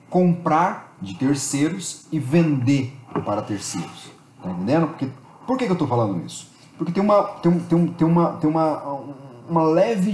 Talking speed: 125 wpm